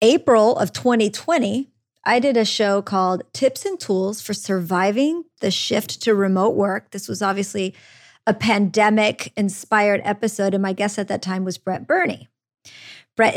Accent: American